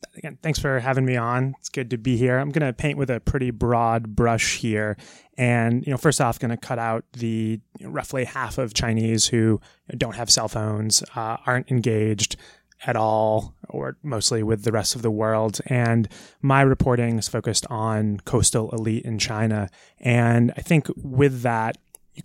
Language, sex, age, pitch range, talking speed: English, male, 30-49, 110-130 Hz, 180 wpm